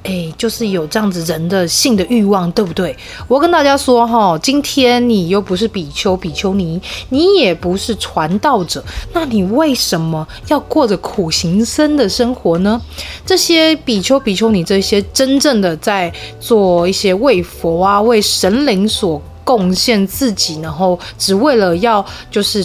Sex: female